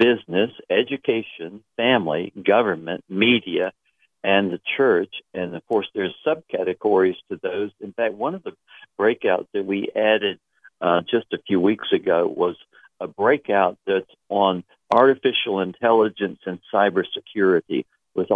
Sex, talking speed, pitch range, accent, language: male, 130 wpm, 95-115 Hz, American, English